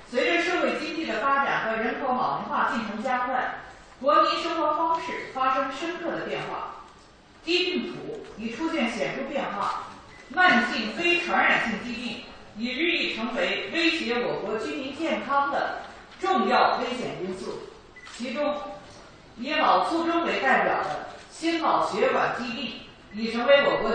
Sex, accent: female, native